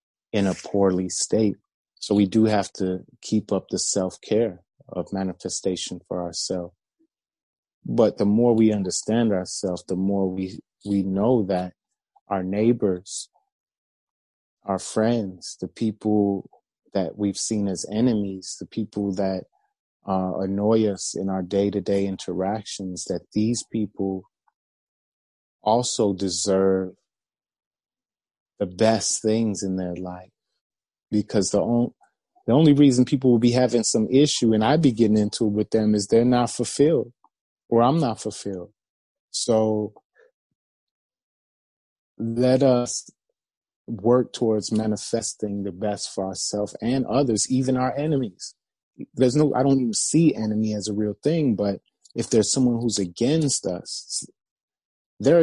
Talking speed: 135 wpm